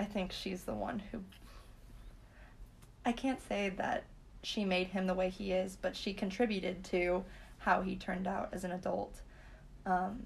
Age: 20-39